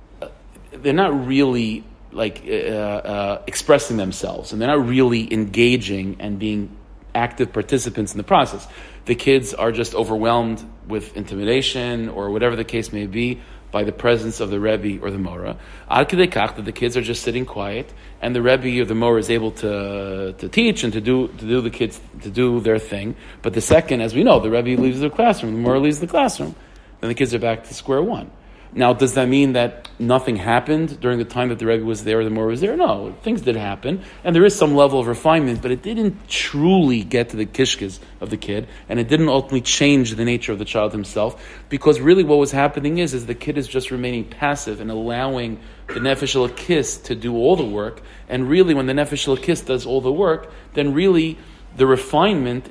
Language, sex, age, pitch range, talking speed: English, male, 40-59, 110-135 Hz, 210 wpm